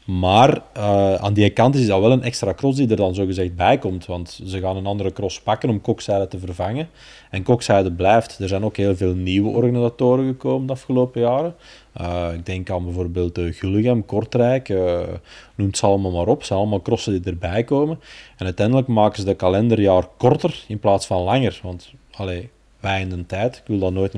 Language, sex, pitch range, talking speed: Dutch, male, 95-120 Hz, 210 wpm